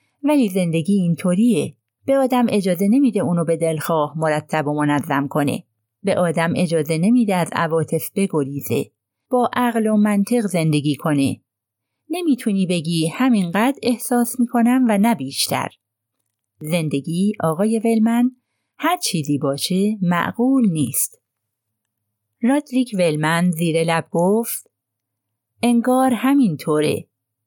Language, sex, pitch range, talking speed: Persian, female, 145-225 Hz, 110 wpm